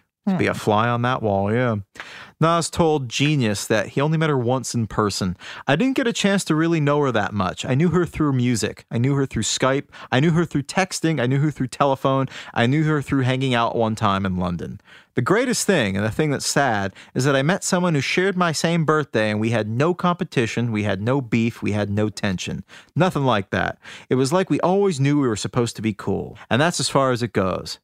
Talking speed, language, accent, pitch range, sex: 240 wpm, English, American, 110-160 Hz, male